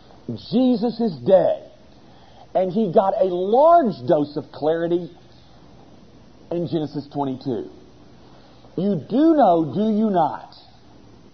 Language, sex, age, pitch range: English, male, 50-69, 165-245 Hz